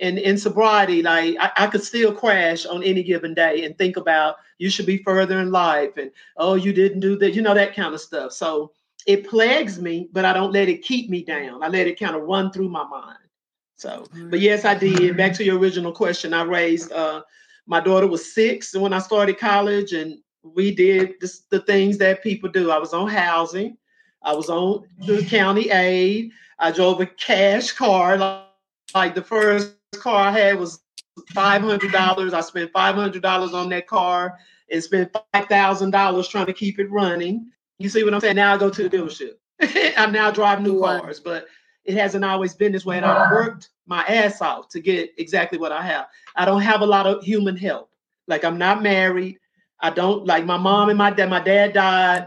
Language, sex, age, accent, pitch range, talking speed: English, male, 50-69, American, 180-205 Hz, 215 wpm